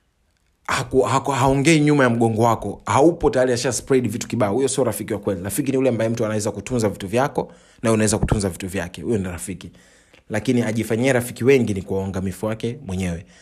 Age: 30-49